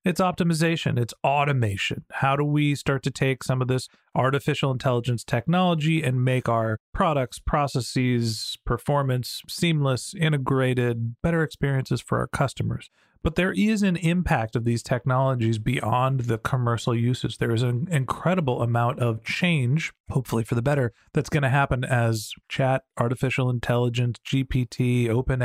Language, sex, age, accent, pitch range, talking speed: English, male, 40-59, American, 125-165 Hz, 145 wpm